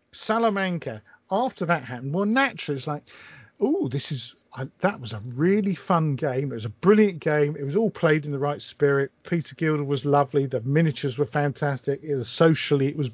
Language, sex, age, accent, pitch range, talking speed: English, male, 50-69, British, 135-185 Hz, 185 wpm